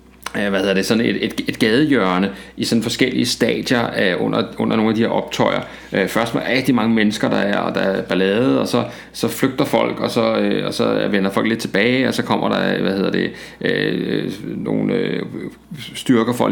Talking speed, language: 210 wpm, Danish